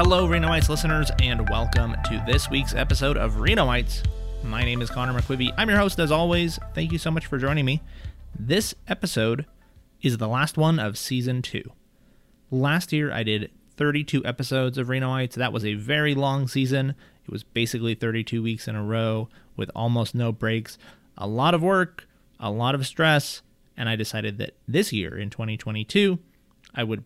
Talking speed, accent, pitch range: 180 wpm, American, 110-135 Hz